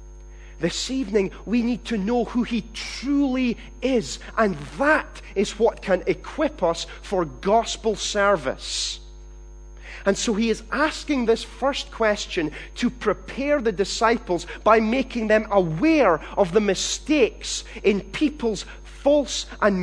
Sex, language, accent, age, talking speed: male, English, British, 30-49, 130 wpm